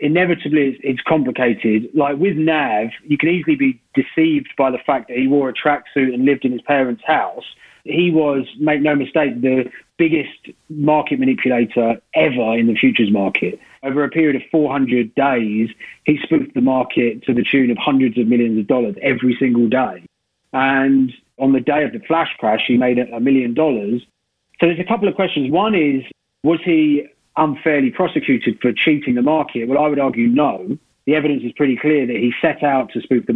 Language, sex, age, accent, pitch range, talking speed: English, male, 30-49, British, 125-155 Hz, 190 wpm